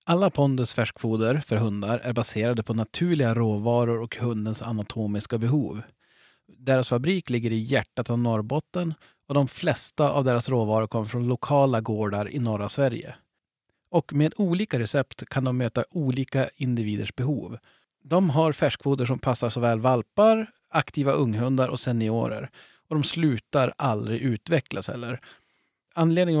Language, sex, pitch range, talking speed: Swedish, male, 115-145 Hz, 140 wpm